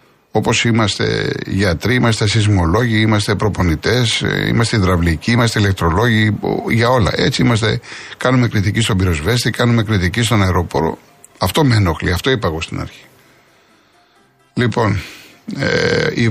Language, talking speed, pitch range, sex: Greek, 120 wpm, 105-130 Hz, male